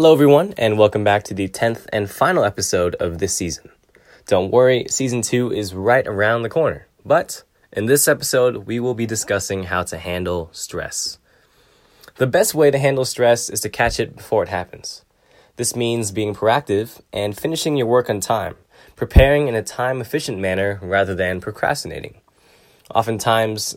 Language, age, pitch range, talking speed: English, 10-29, 95-125 Hz, 170 wpm